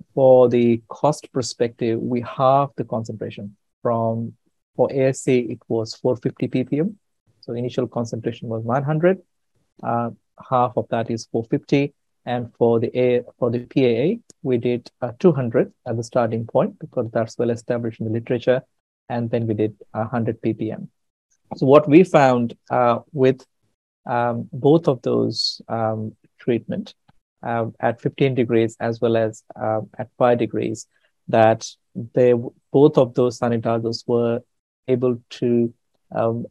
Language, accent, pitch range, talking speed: English, Indian, 115-130 Hz, 145 wpm